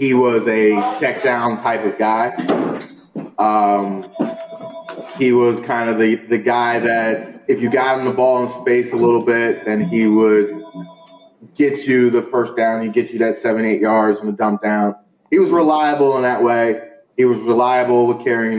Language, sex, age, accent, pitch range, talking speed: English, male, 20-39, American, 110-130 Hz, 185 wpm